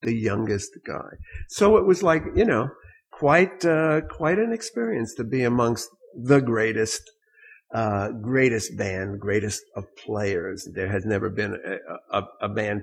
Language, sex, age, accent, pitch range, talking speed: English, male, 50-69, American, 105-155 Hz, 155 wpm